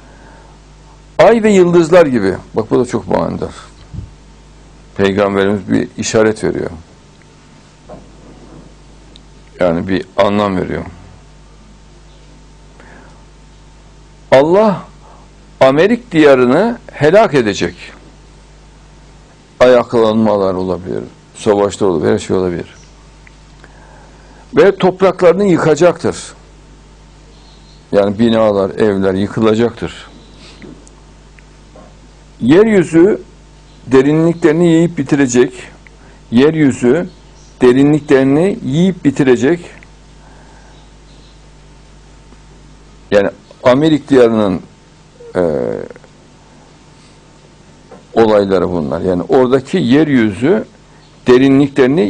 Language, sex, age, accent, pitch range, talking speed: Turkish, male, 60-79, native, 110-160 Hz, 60 wpm